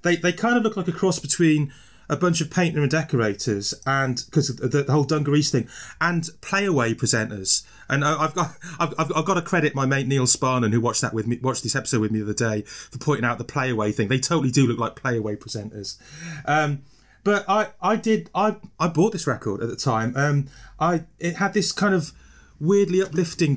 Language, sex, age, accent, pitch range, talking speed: English, male, 30-49, British, 125-170 Hz, 220 wpm